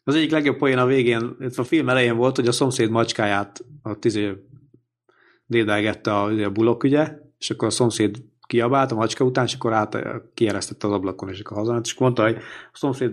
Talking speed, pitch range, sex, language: 180 wpm, 115-140 Hz, male, Hungarian